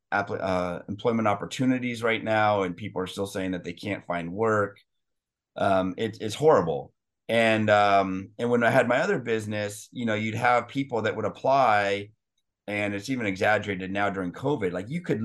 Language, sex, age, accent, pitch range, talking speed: English, male, 30-49, American, 100-115 Hz, 175 wpm